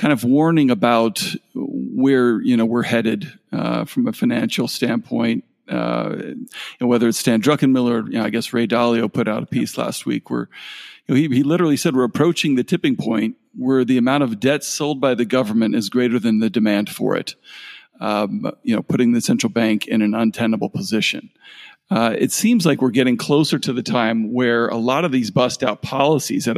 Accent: American